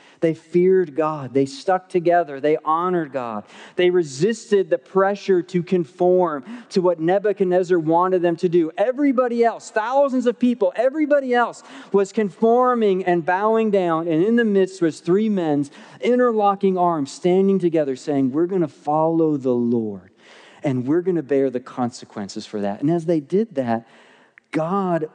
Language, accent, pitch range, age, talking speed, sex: English, American, 140-195 Hz, 40-59, 160 wpm, male